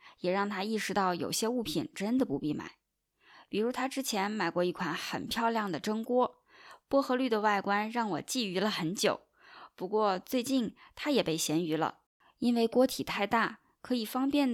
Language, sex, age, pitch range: Chinese, female, 20-39, 190-255 Hz